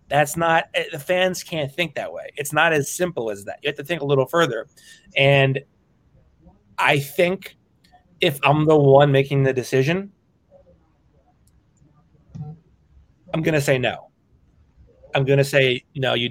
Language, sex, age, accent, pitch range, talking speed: English, male, 30-49, American, 130-160 Hz, 165 wpm